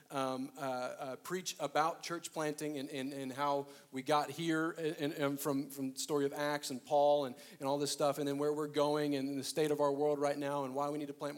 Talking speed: 250 wpm